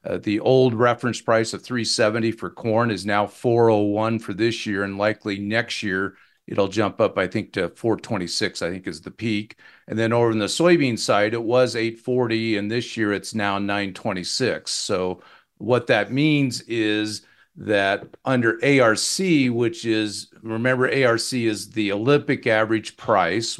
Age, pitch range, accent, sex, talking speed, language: 50-69, 105-120 Hz, American, male, 165 wpm, English